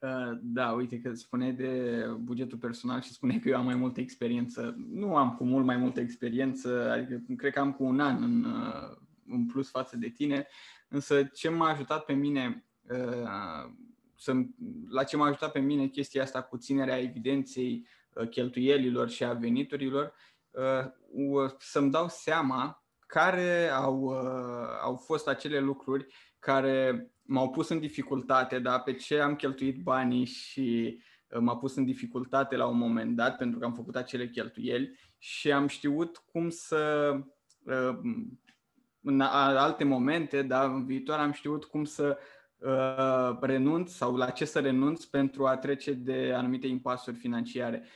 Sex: male